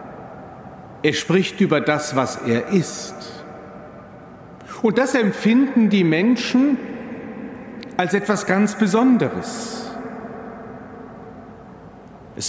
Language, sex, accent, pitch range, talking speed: German, male, German, 160-230 Hz, 80 wpm